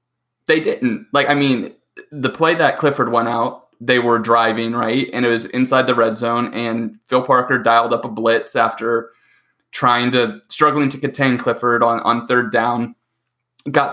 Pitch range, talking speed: 120-135 Hz, 175 wpm